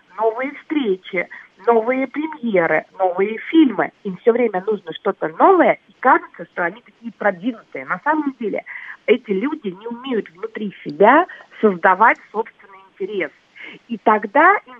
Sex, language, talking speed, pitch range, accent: female, Russian, 135 wpm, 200-280 Hz, native